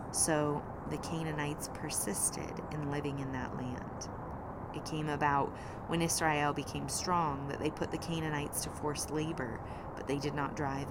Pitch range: 135-160 Hz